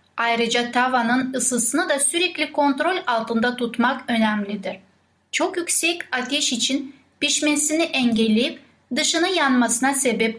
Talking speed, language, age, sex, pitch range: 105 wpm, Turkish, 10-29, female, 230-285 Hz